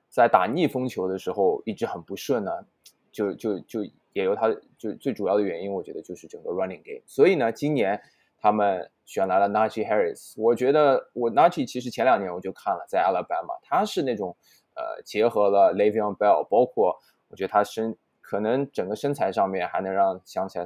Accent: native